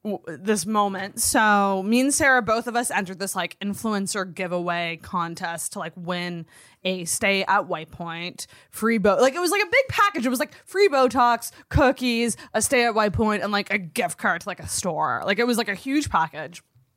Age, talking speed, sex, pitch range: 20-39, 210 wpm, female, 185-275 Hz